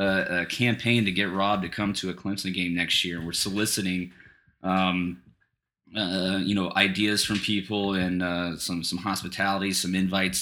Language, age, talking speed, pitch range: English, 20-39, 165 wpm, 90-105 Hz